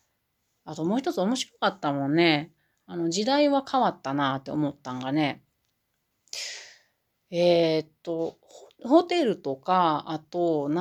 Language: Japanese